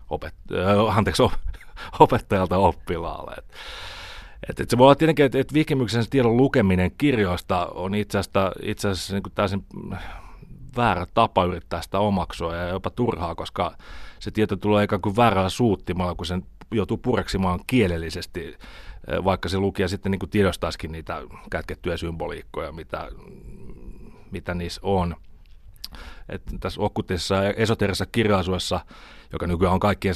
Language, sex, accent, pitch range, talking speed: Finnish, male, native, 90-105 Hz, 135 wpm